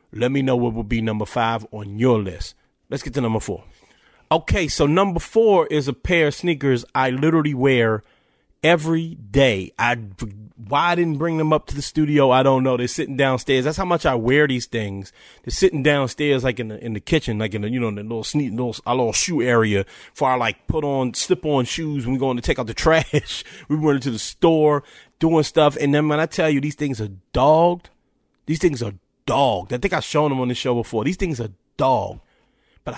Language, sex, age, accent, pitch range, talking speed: English, male, 30-49, American, 120-160 Hz, 230 wpm